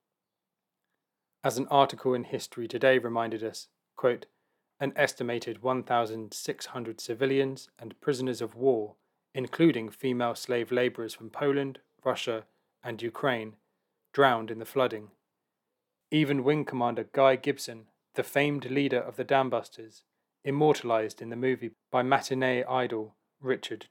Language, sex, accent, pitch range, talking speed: English, male, British, 115-135 Hz, 125 wpm